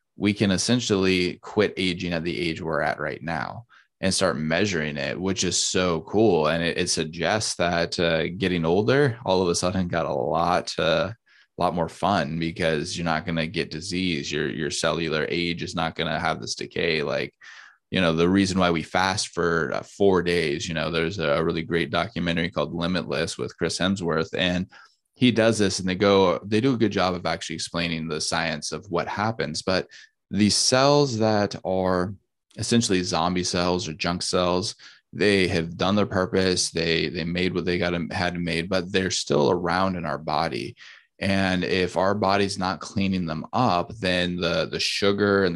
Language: English